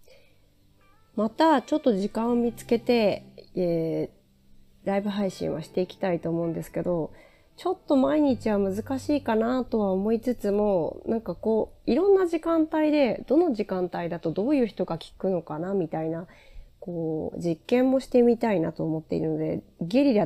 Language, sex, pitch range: Japanese, female, 170-245 Hz